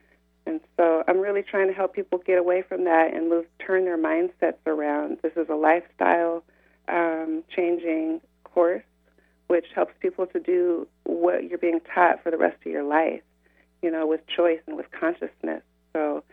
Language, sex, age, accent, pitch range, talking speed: English, female, 30-49, American, 150-165 Hz, 175 wpm